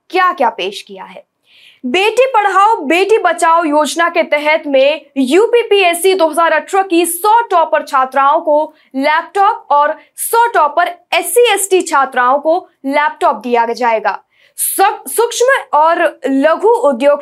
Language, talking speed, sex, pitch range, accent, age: Hindi, 120 wpm, female, 280-380 Hz, native, 20-39